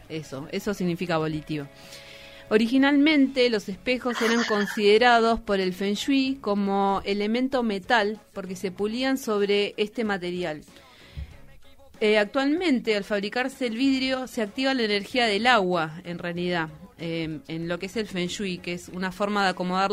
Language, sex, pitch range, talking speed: Spanish, female, 180-235 Hz, 150 wpm